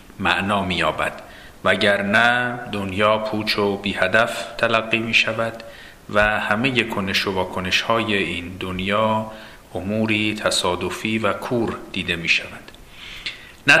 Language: Persian